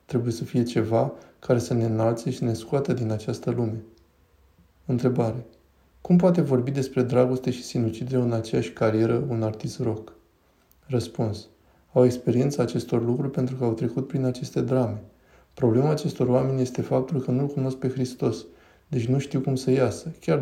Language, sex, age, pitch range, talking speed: Romanian, male, 20-39, 110-130 Hz, 170 wpm